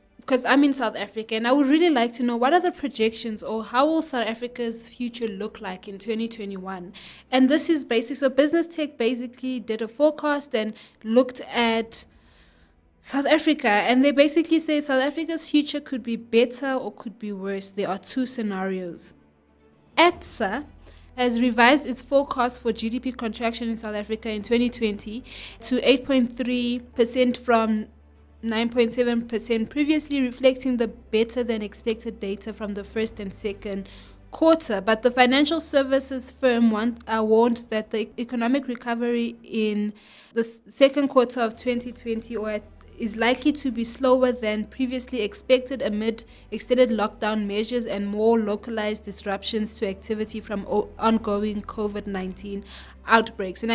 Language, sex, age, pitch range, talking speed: English, female, 20-39, 215-255 Hz, 145 wpm